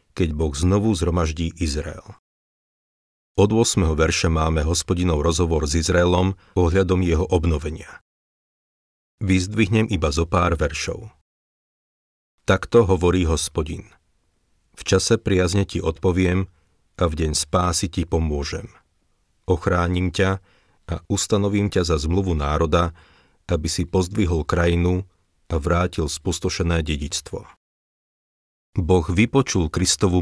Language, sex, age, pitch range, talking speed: Slovak, male, 40-59, 80-95 Hz, 105 wpm